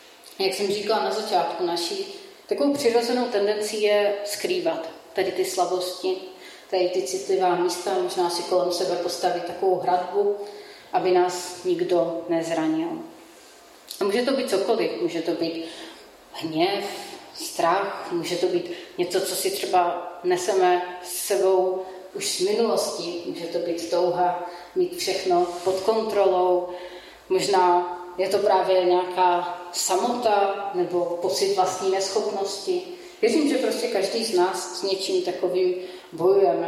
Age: 30-49